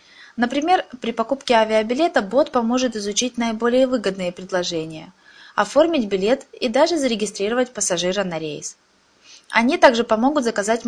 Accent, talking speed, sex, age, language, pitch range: native, 120 wpm, female, 20-39, Russian, 195-255 Hz